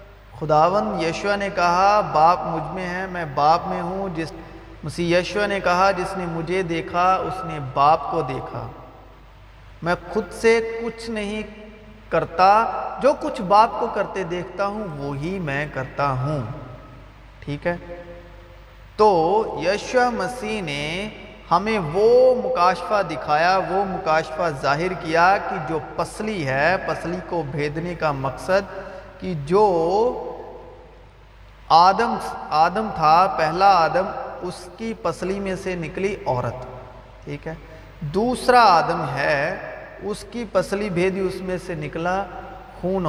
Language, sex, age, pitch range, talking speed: Urdu, male, 50-69, 155-200 Hz, 130 wpm